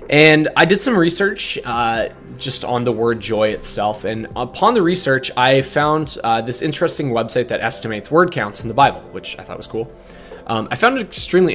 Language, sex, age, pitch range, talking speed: English, male, 20-39, 105-140 Hz, 205 wpm